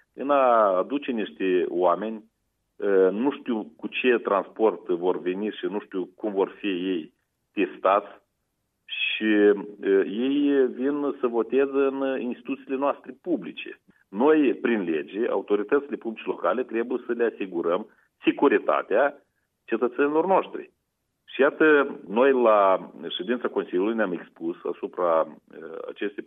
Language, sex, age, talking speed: Romanian, male, 40-59, 120 wpm